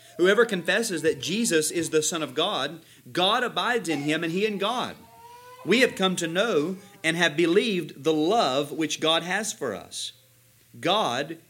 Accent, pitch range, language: American, 115-145 Hz, English